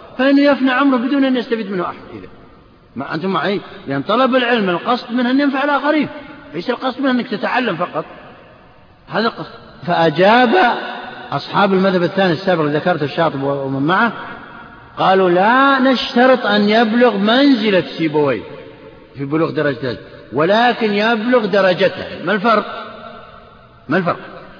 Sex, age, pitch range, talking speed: male, 60-79, 185-255 Hz, 135 wpm